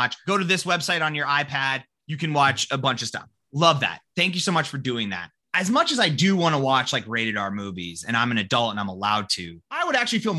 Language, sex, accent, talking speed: English, male, American, 270 wpm